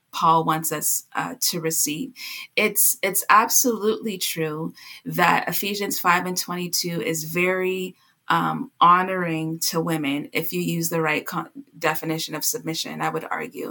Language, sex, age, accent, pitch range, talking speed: English, female, 20-39, American, 165-195 Hz, 145 wpm